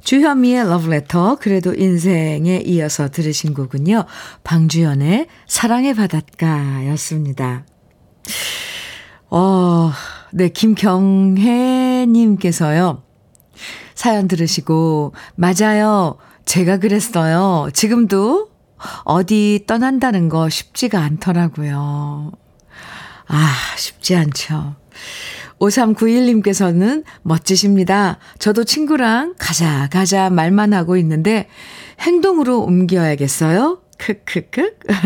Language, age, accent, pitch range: Korean, 50-69, native, 165-225 Hz